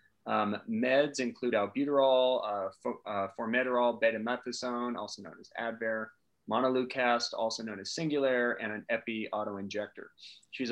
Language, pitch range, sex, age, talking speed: English, 110-140 Hz, male, 30-49, 135 wpm